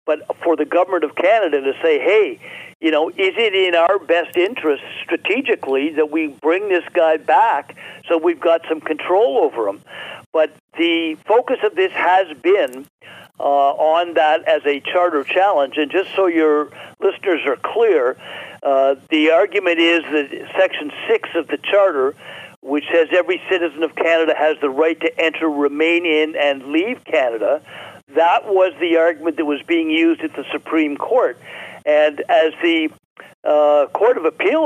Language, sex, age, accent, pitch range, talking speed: English, male, 50-69, American, 155-200 Hz, 170 wpm